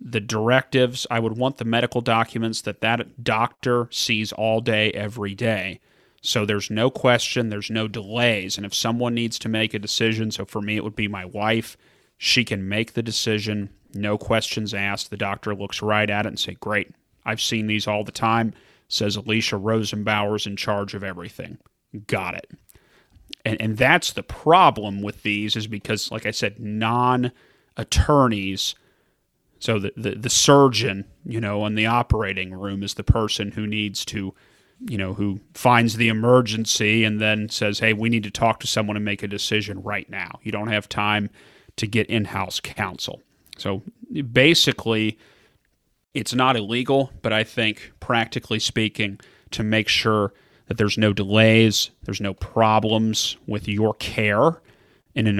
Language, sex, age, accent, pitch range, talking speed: English, male, 30-49, American, 105-115 Hz, 170 wpm